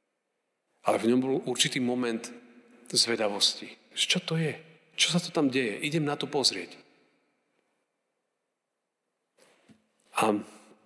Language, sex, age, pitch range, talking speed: Slovak, male, 40-59, 110-130 Hz, 110 wpm